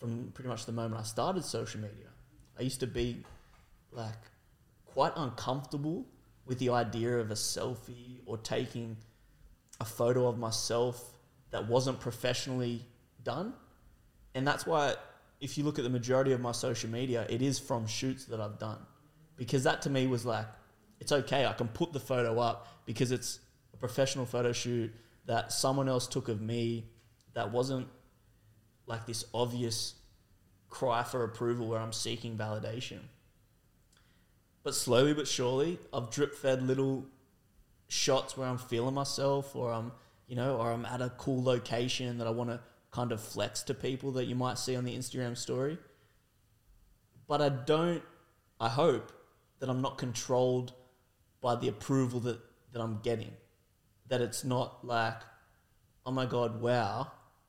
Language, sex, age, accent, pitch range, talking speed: English, male, 20-39, Australian, 115-130 Hz, 160 wpm